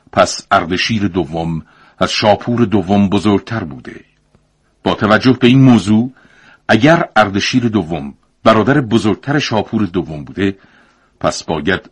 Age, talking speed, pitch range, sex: 50-69, 115 wpm, 90-115 Hz, male